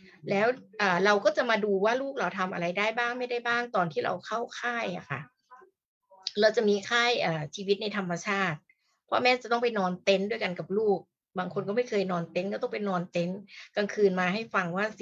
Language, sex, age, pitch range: Thai, female, 60-79, 175-215 Hz